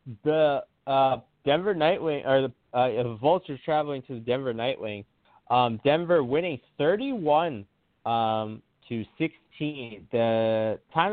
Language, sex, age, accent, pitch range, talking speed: English, male, 20-39, American, 110-140 Hz, 110 wpm